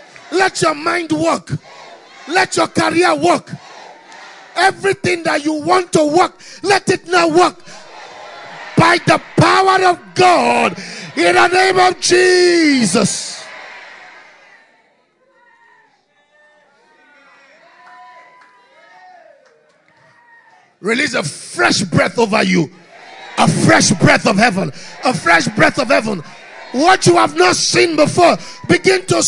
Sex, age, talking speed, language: male, 50-69, 105 wpm, English